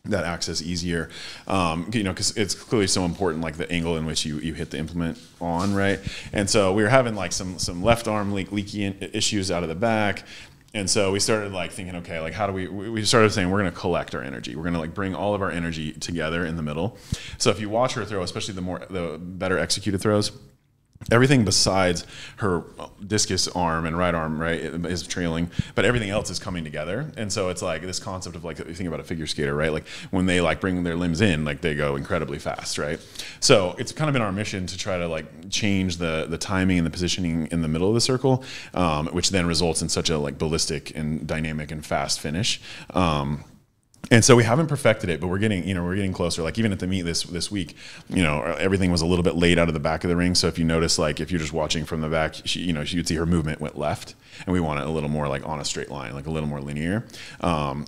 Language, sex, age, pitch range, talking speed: English, male, 30-49, 80-100 Hz, 255 wpm